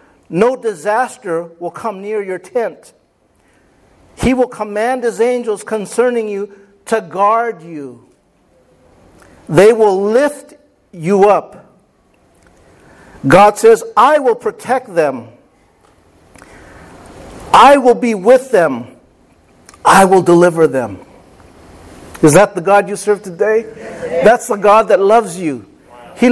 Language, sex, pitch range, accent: English, male, 200-240 Hz, American